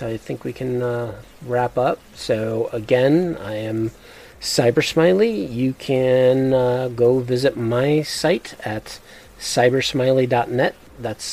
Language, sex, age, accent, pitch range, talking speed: English, male, 40-59, American, 105-125 Hz, 115 wpm